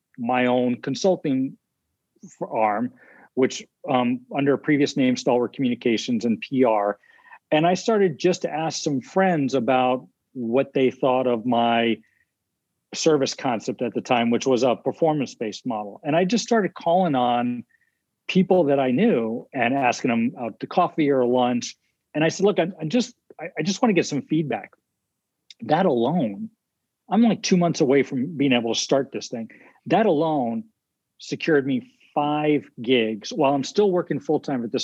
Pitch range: 125-180 Hz